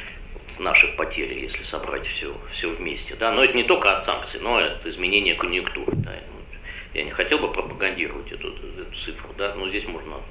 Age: 50-69